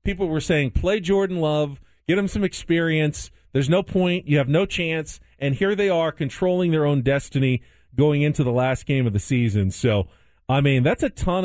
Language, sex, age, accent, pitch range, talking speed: English, male, 40-59, American, 115-155 Hz, 205 wpm